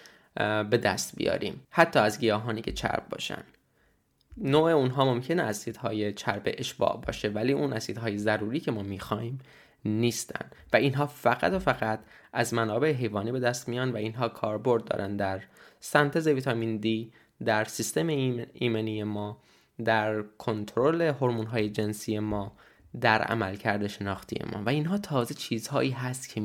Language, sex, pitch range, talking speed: Persian, male, 105-130 Hz, 145 wpm